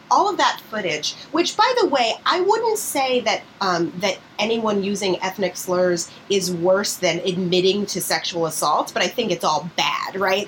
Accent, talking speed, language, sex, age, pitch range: American, 185 wpm, English, female, 30-49, 170-215 Hz